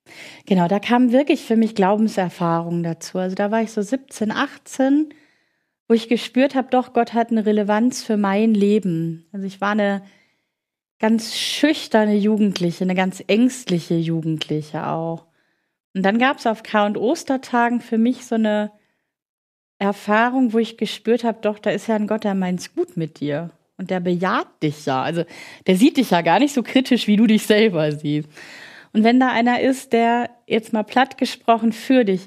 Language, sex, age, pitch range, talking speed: German, female, 30-49, 195-240 Hz, 185 wpm